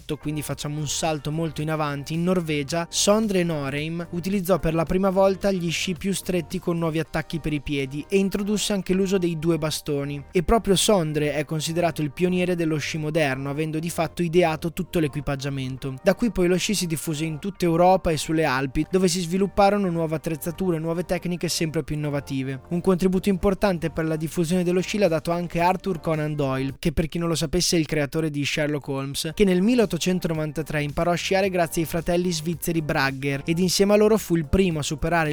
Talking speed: 200 wpm